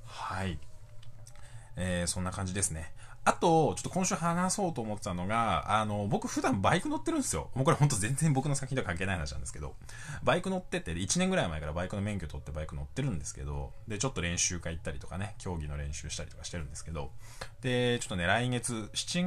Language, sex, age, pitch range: Japanese, male, 20-39, 85-125 Hz